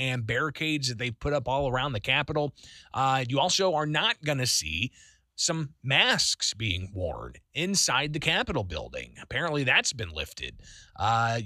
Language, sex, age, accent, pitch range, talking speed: English, male, 30-49, American, 120-160 Hz, 155 wpm